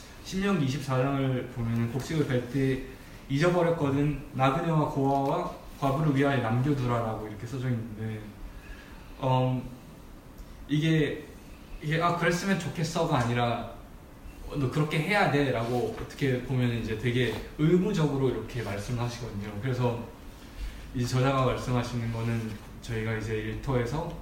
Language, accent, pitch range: Korean, native, 115-145 Hz